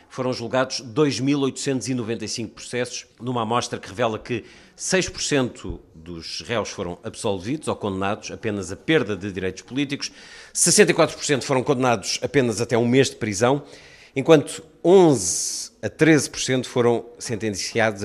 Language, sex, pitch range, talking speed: Portuguese, male, 105-135 Hz, 125 wpm